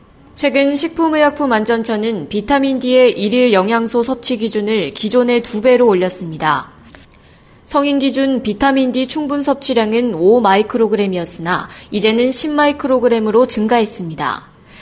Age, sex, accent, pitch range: 20-39, female, native, 205-265 Hz